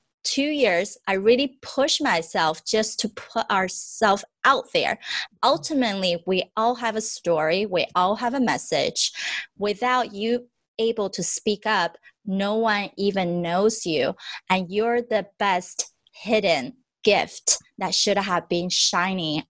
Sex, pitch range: female, 175-220 Hz